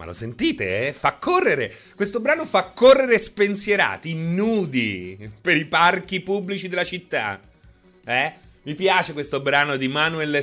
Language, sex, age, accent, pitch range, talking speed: Italian, male, 30-49, native, 115-190 Hz, 145 wpm